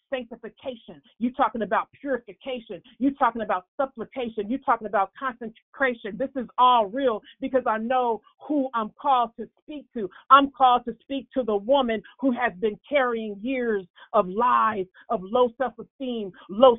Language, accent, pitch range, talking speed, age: English, American, 220-260 Hz, 155 wpm, 40-59